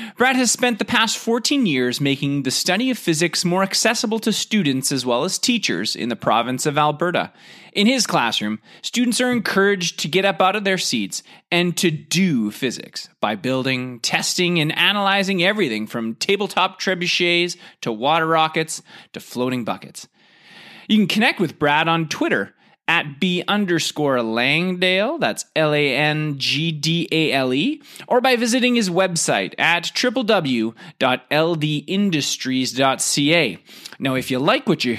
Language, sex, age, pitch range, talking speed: English, male, 30-49, 145-220 Hz, 140 wpm